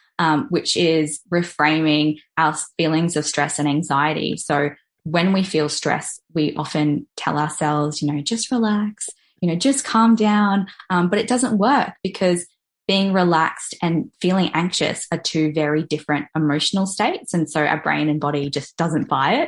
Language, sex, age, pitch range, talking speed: English, female, 10-29, 155-225 Hz, 170 wpm